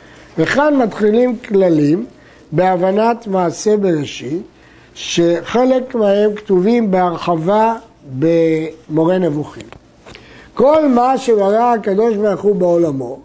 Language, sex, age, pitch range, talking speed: Hebrew, male, 60-79, 175-235 Hz, 80 wpm